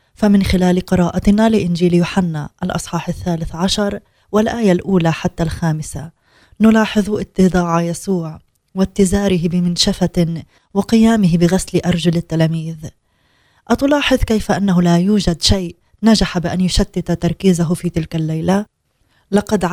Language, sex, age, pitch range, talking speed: Arabic, female, 20-39, 165-195 Hz, 105 wpm